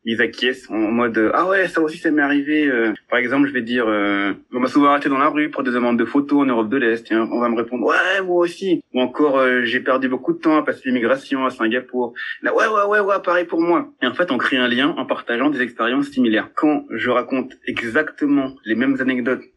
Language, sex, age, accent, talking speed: French, male, 20-39, French, 275 wpm